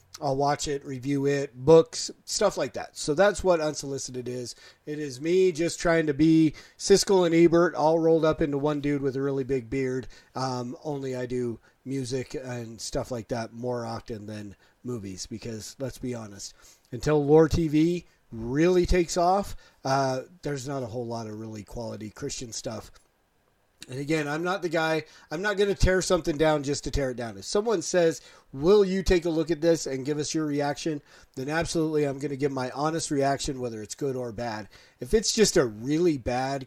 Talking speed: 200 wpm